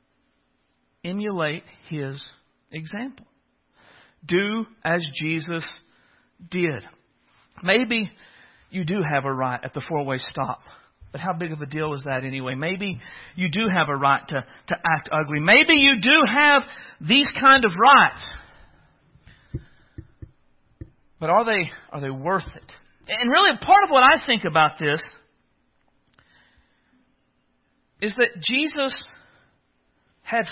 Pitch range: 145-235 Hz